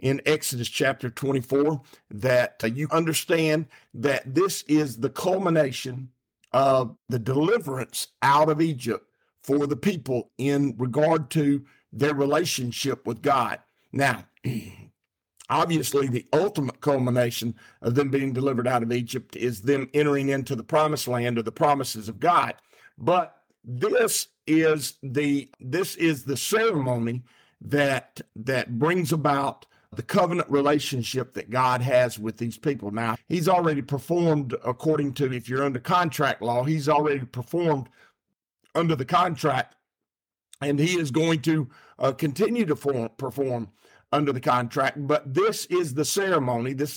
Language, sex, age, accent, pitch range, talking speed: English, male, 50-69, American, 125-155 Hz, 140 wpm